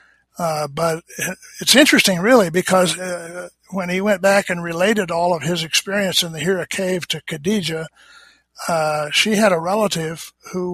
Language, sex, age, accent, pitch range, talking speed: English, male, 60-79, American, 165-190 Hz, 160 wpm